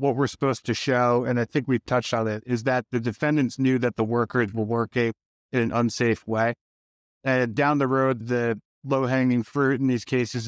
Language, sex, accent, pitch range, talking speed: English, male, American, 115-135 Hz, 205 wpm